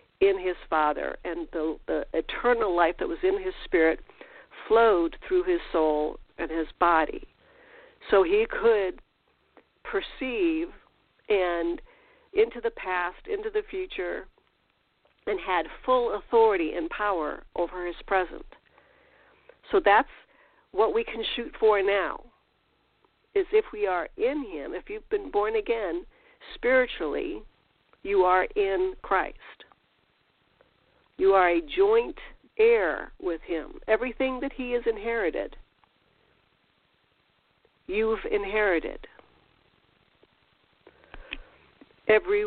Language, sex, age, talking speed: English, female, 50-69, 110 wpm